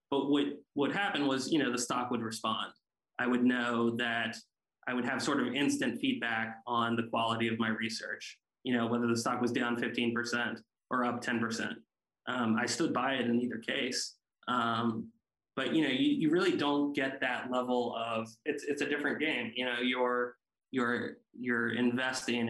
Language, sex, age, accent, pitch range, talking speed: English, male, 20-39, American, 115-125 Hz, 190 wpm